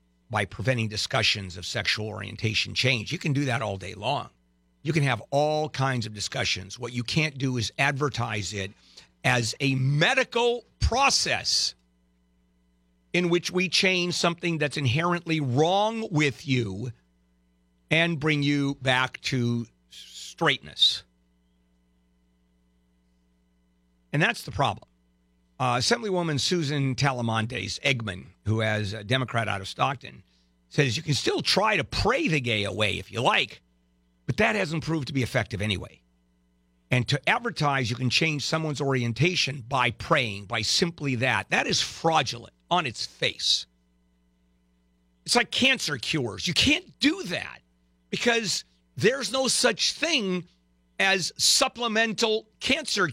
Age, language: 50-69, English